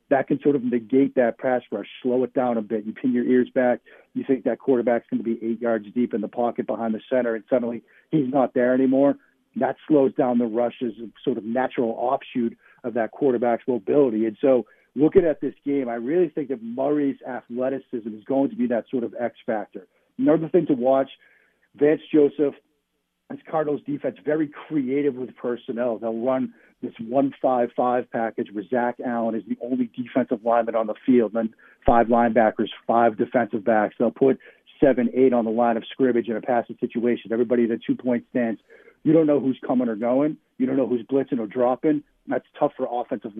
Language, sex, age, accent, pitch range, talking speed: English, male, 50-69, American, 120-140 Hz, 200 wpm